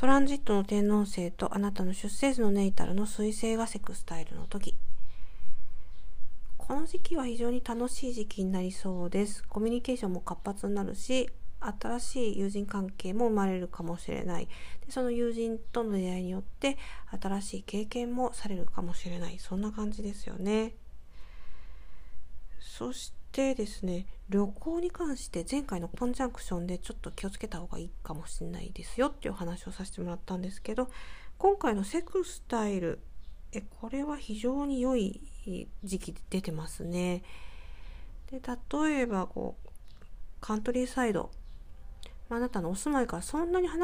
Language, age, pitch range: Japanese, 50-69, 180-245 Hz